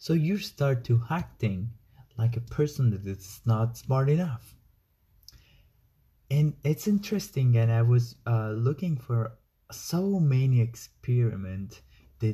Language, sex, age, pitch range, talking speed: English, male, 30-49, 105-130 Hz, 125 wpm